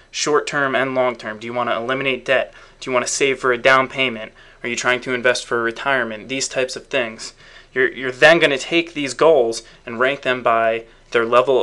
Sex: male